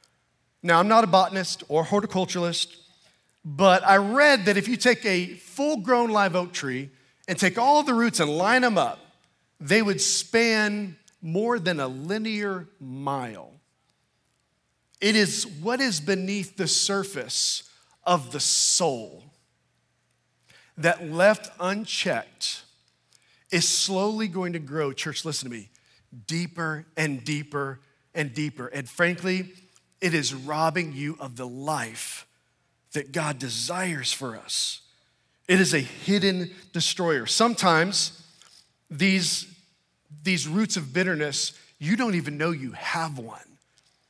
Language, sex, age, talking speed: English, male, 40-59, 130 wpm